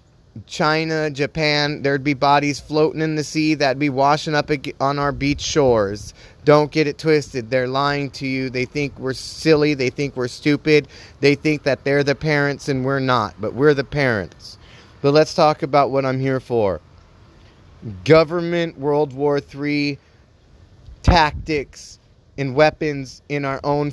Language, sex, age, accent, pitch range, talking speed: English, male, 30-49, American, 125-150 Hz, 160 wpm